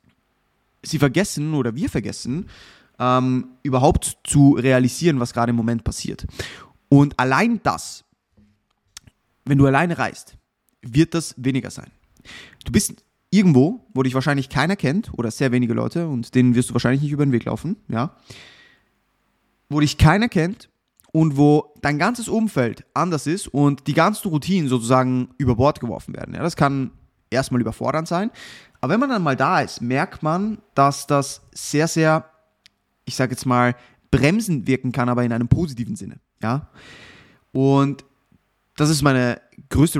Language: German